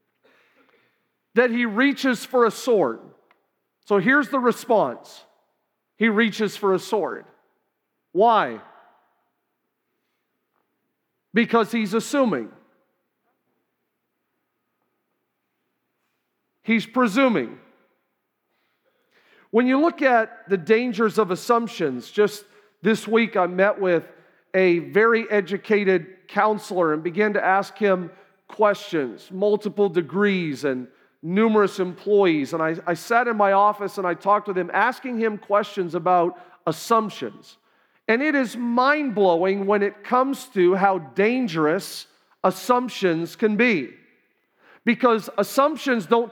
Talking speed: 110 wpm